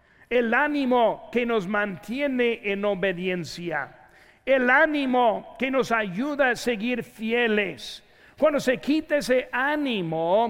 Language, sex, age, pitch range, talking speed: Spanish, male, 50-69, 185-250 Hz, 115 wpm